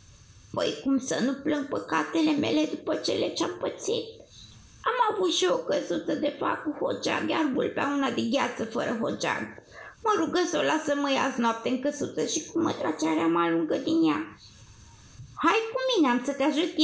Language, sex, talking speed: Romanian, female, 180 wpm